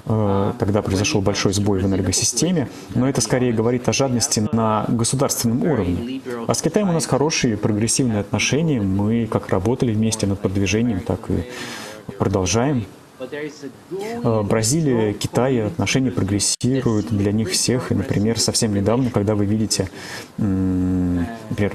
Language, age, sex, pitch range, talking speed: Russian, 30-49, male, 100-125 Hz, 130 wpm